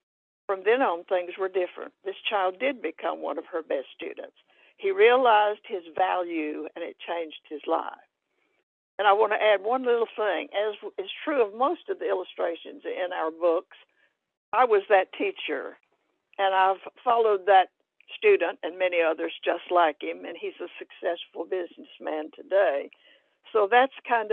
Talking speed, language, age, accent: 165 wpm, English, 60-79, American